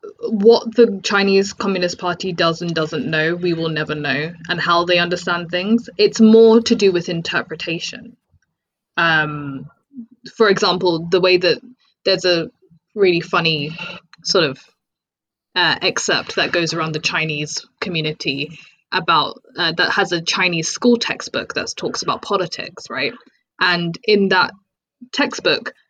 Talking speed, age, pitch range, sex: 140 wpm, 20-39, 165-215 Hz, female